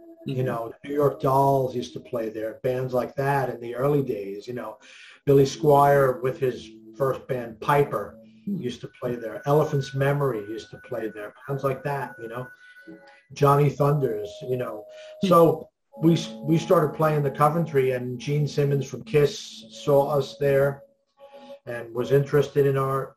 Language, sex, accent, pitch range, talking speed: English, male, American, 125-140 Hz, 165 wpm